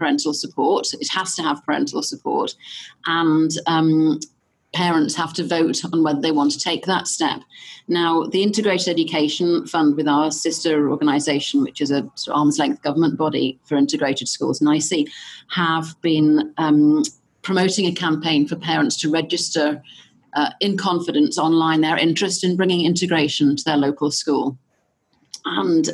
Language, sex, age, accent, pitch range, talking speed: English, female, 30-49, British, 150-180 Hz, 155 wpm